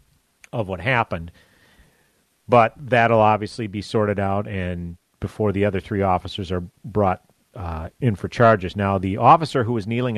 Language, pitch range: English, 95-120 Hz